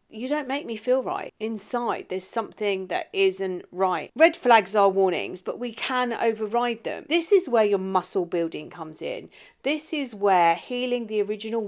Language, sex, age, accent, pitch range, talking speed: English, female, 40-59, British, 185-235 Hz, 180 wpm